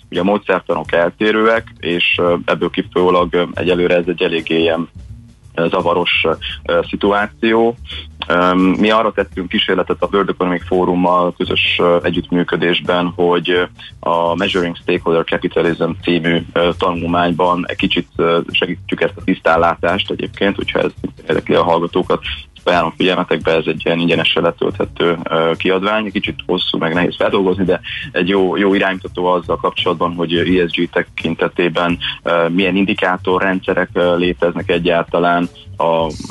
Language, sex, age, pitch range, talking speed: Hungarian, male, 20-39, 85-95 Hz, 120 wpm